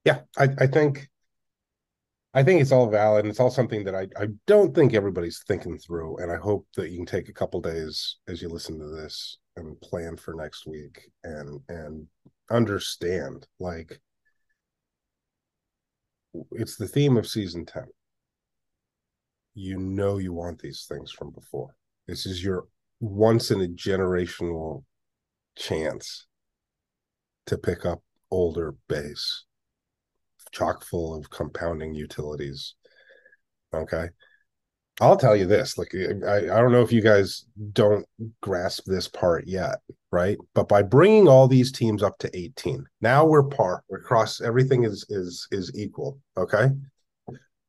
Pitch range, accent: 85-120 Hz, American